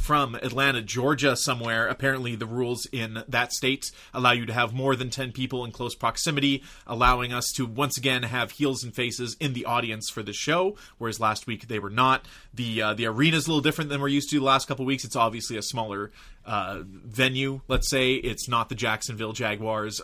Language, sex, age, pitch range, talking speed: English, male, 30-49, 115-150 Hz, 215 wpm